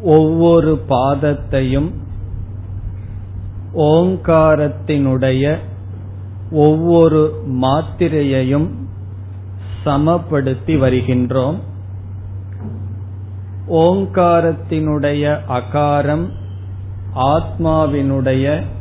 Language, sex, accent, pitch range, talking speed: Tamil, male, native, 95-150 Hz, 30 wpm